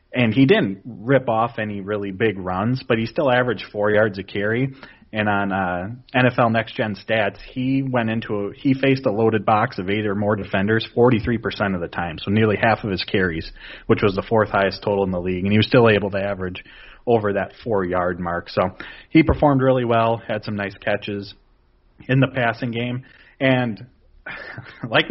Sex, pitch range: male, 105-125 Hz